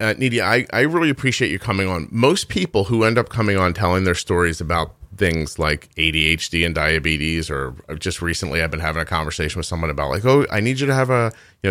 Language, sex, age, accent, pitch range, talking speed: English, male, 30-49, American, 85-120 Hz, 230 wpm